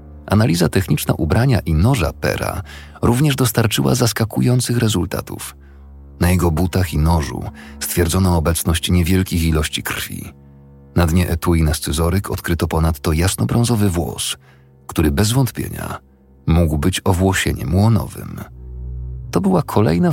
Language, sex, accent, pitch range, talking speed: Polish, male, native, 85-110 Hz, 115 wpm